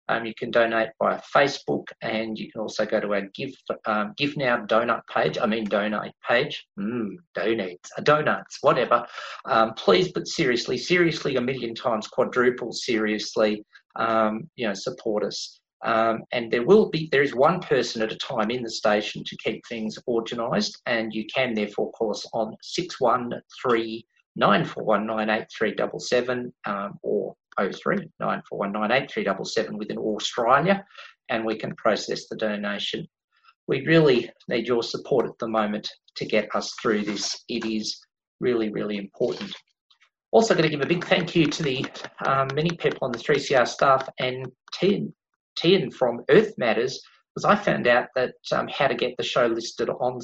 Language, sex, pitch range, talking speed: English, male, 110-135 Hz, 170 wpm